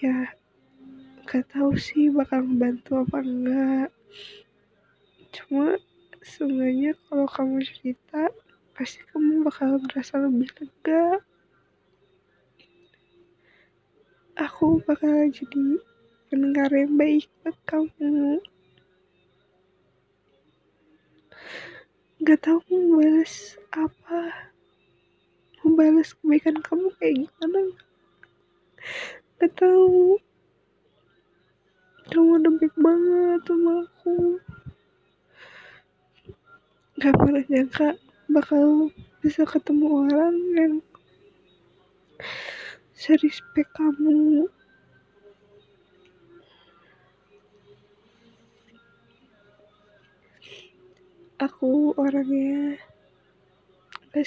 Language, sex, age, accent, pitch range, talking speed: English, female, 20-39, Indonesian, 270-330 Hz, 60 wpm